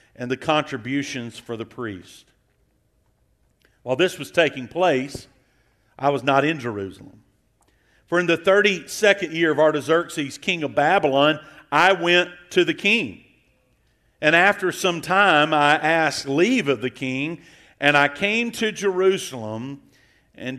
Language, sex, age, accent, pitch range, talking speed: English, male, 50-69, American, 130-175 Hz, 135 wpm